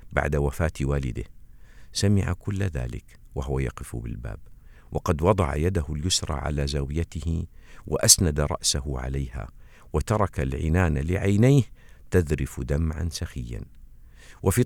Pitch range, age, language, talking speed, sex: 70-95 Hz, 50-69, Arabic, 100 wpm, male